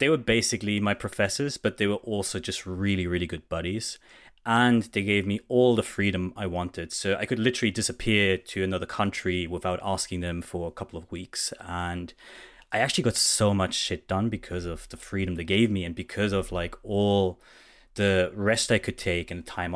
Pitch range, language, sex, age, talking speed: 95-115 Hz, English, male, 20-39, 205 wpm